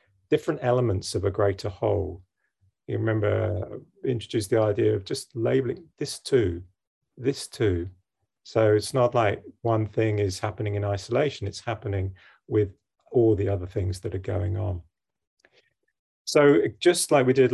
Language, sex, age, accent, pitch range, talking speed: English, male, 40-59, British, 100-120 Hz, 155 wpm